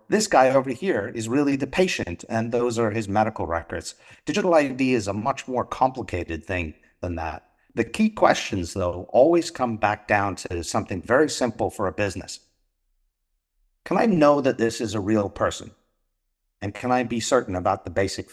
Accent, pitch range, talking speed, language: American, 95-135 Hz, 185 wpm, English